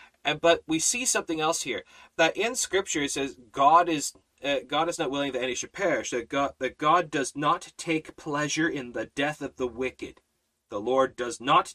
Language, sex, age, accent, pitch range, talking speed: English, male, 30-49, American, 130-195 Hz, 210 wpm